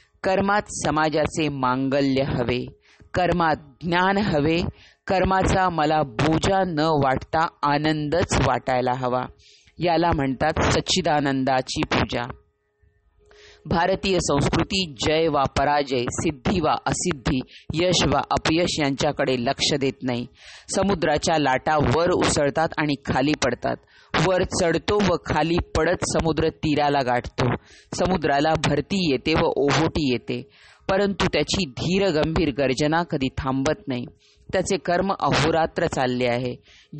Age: 30-49